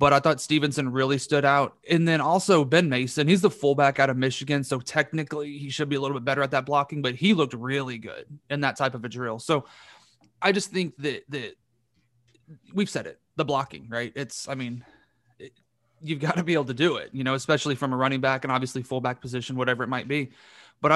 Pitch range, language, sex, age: 125-155 Hz, English, male, 20-39